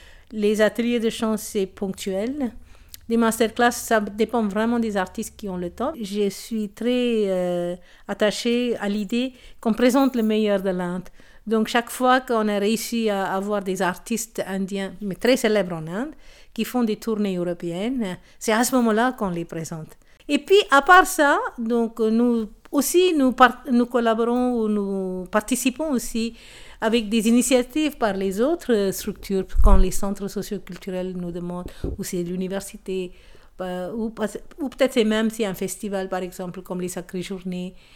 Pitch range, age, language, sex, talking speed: 195-235 Hz, 50-69, French, female, 165 wpm